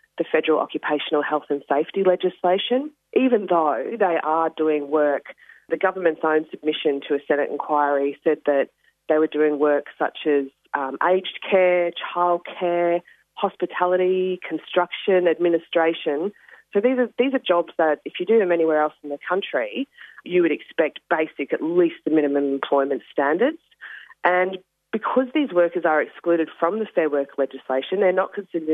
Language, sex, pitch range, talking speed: English, female, 150-185 Hz, 160 wpm